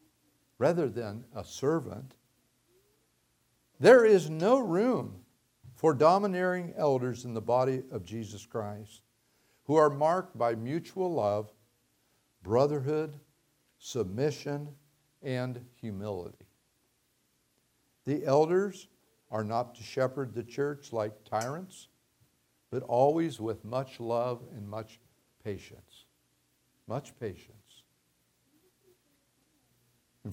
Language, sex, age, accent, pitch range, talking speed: English, male, 60-79, American, 115-155 Hz, 95 wpm